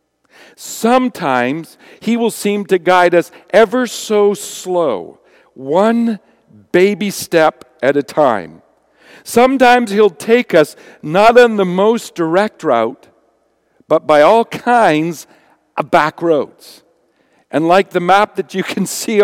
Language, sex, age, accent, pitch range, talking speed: English, male, 50-69, American, 155-225 Hz, 130 wpm